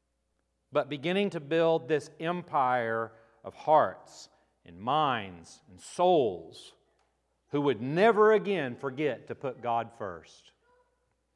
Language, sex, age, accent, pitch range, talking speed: English, male, 40-59, American, 110-170 Hz, 110 wpm